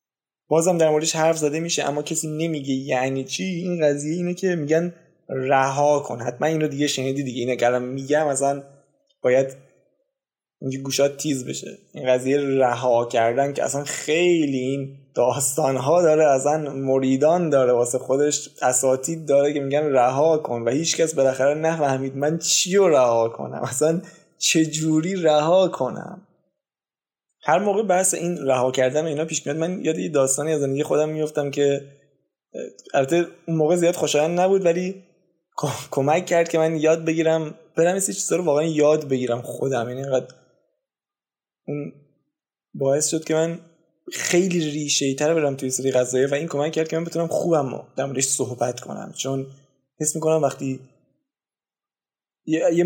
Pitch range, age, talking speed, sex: 135-165 Hz, 20-39, 150 wpm, male